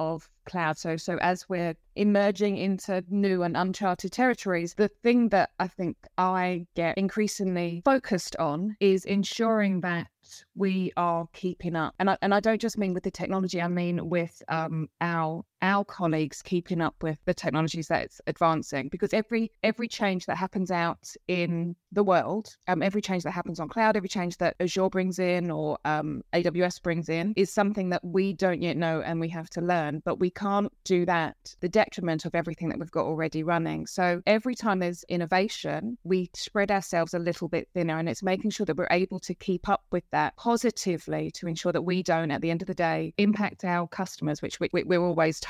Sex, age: female, 20-39